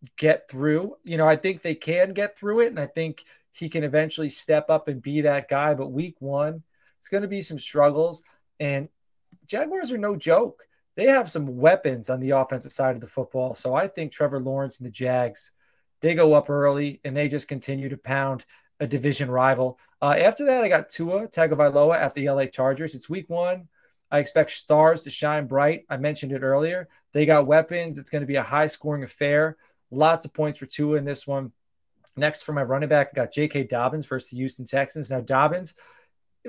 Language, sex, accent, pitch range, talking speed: English, male, American, 140-180 Hz, 210 wpm